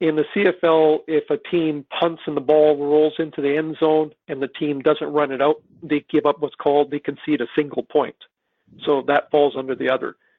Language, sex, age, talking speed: English, male, 50-69, 220 wpm